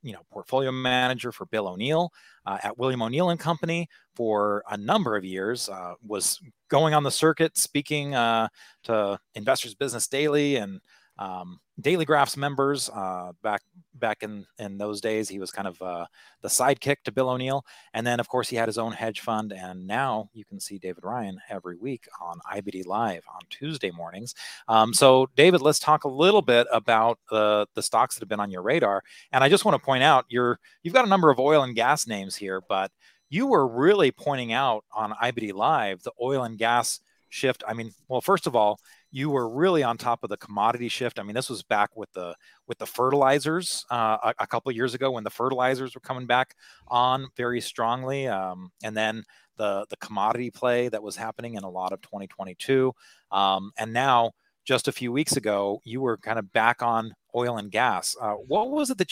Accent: American